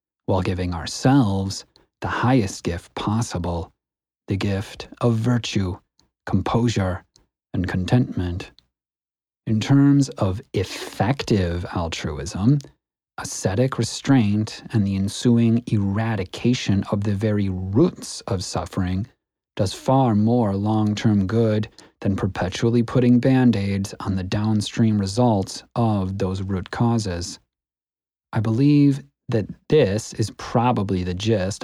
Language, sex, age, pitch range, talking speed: English, male, 30-49, 95-120 Hz, 105 wpm